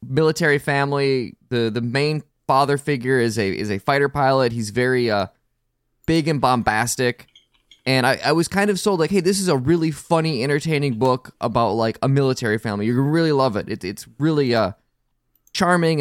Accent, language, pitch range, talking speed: American, English, 120-150 Hz, 185 wpm